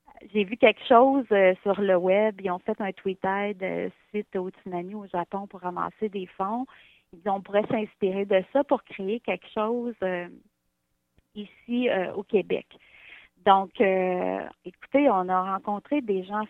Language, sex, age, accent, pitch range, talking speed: French, female, 30-49, Canadian, 185-220 Hz, 175 wpm